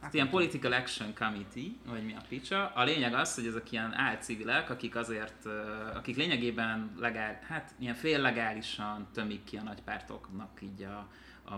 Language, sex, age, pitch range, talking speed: Hungarian, male, 30-49, 100-120 Hz, 155 wpm